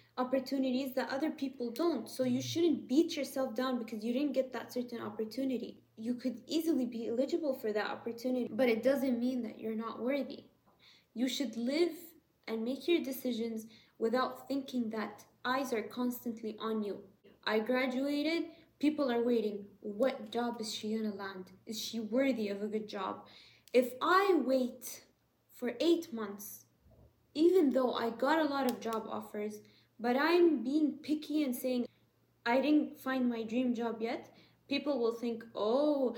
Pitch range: 230-275 Hz